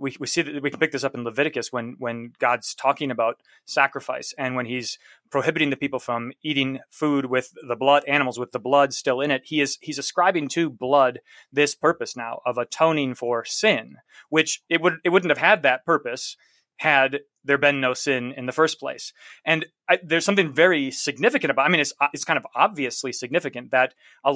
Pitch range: 130-155 Hz